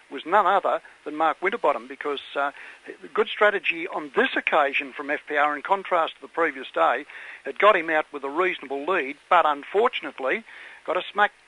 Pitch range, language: 145-175 Hz, English